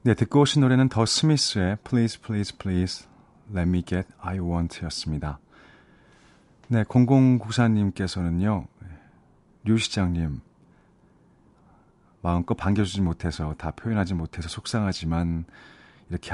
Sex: male